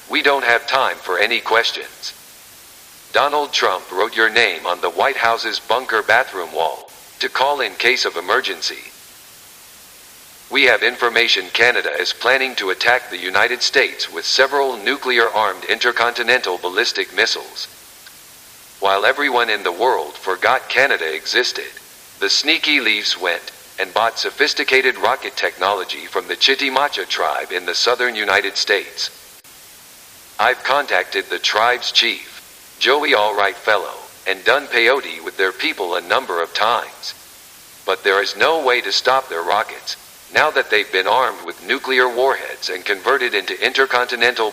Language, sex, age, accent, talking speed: English, male, 50-69, American, 145 wpm